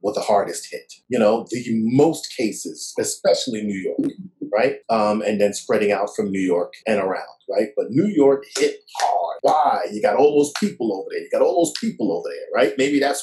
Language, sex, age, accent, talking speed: English, male, 40-59, American, 210 wpm